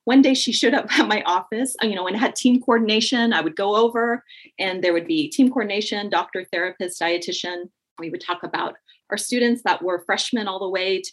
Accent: American